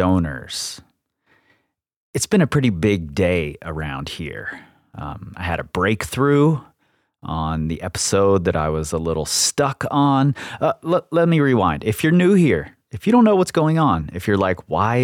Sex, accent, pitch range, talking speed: male, American, 85-125 Hz, 175 wpm